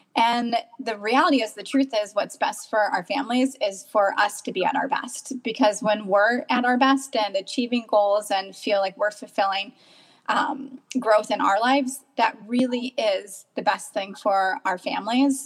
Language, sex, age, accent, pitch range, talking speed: English, female, 20-39, American, 215-280 Hz, 185 wpm